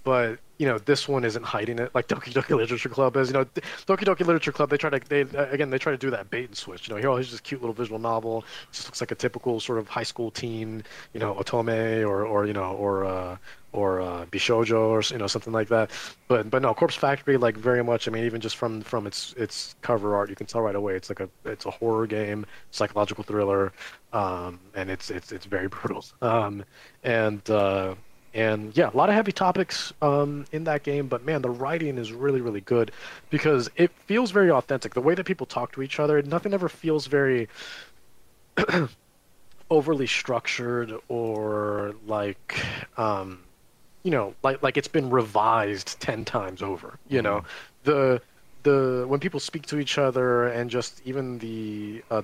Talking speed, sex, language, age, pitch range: 205 wpm, male, English, 20-39, 110-140 Hz